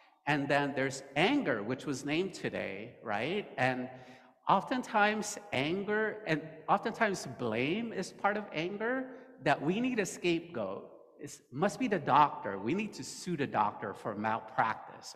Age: 50-69